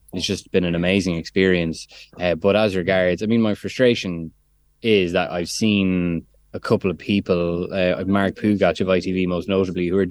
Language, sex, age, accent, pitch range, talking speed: English, male, 20-39, Irish, 90-105 Hz, 185 wpm